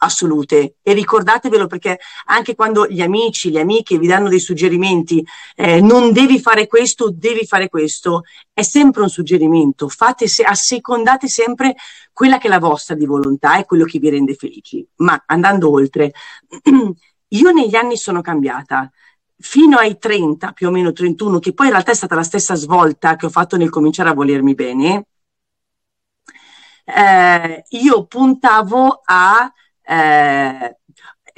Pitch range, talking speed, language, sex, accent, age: 165-230 Hz, 155 wpm, Italian, female, native, 40-59